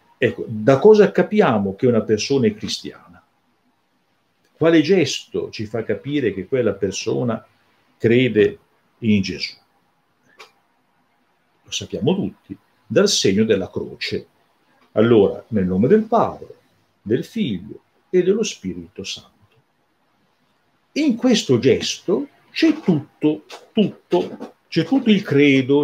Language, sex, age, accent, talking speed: Italian, male, 50-69, native, 110 wpm